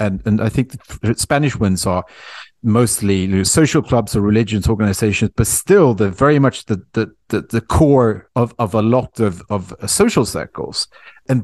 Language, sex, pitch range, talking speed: English, male, 100-125 Hz, 185 wpm